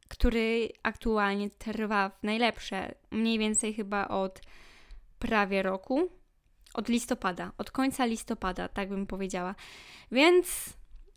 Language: Polish